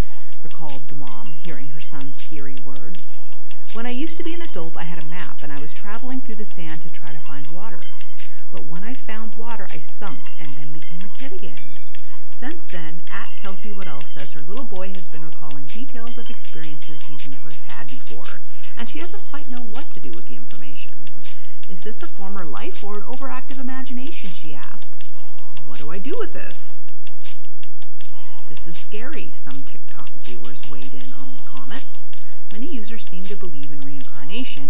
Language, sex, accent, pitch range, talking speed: English, female, American, 145-230 Hz, 190 wpm